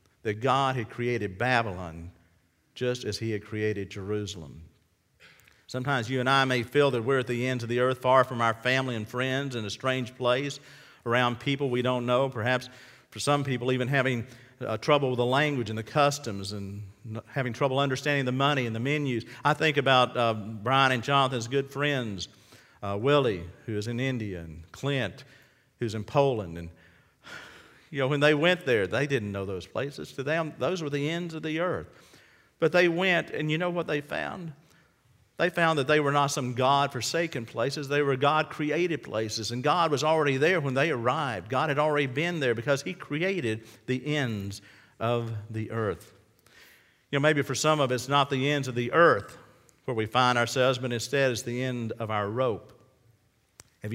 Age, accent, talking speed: 50-69, American, 195 wpm